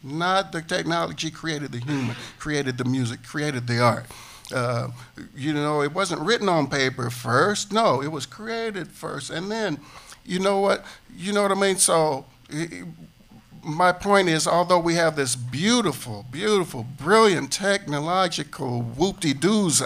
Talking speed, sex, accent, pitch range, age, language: 150 wpm, male, American, 125-180 Hz, 60-79, English